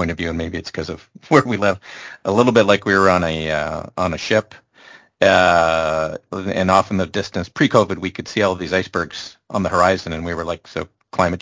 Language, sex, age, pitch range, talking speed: English, male, 40-59, 85-105 Hz, 235 wpm